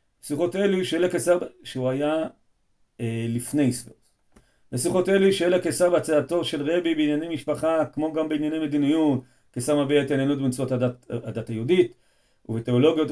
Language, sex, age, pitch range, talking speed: Hebrew, male, 40-59, 115-155 Hz, 135 wpm